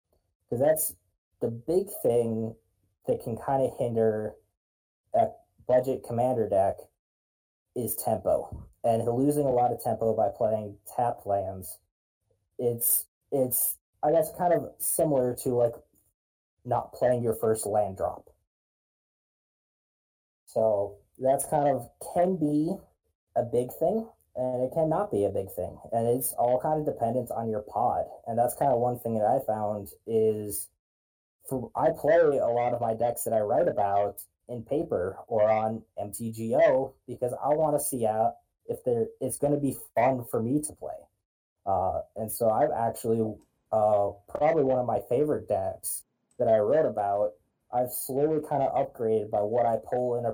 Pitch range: 105-135 Hz